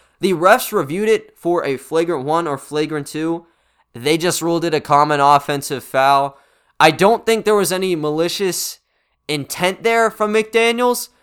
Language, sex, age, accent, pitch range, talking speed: English, male, 20-39, American, 145-215 Hz, 160 wpm